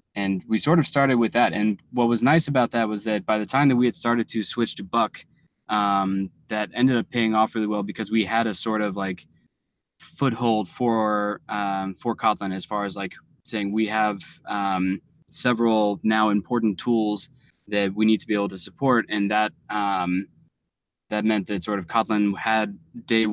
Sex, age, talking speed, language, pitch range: male, 20-39, 200 wpm, English, 100-120 Hz